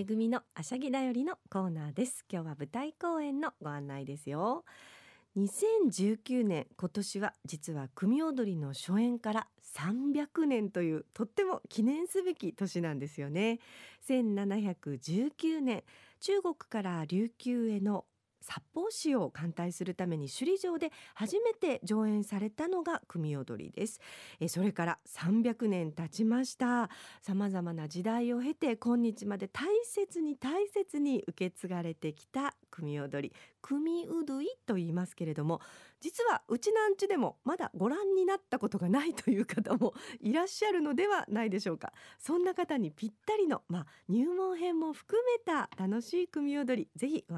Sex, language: female, Japanese